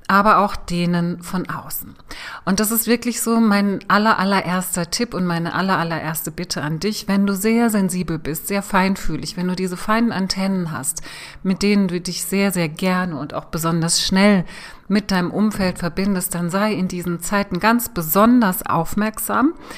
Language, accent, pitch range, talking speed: German, German, 175-215 Hz, 175 wpm